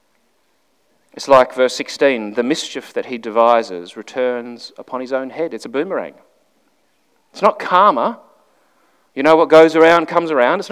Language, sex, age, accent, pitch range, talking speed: English, male, 40-59, Australian, 140-215 Hz, 155 wpm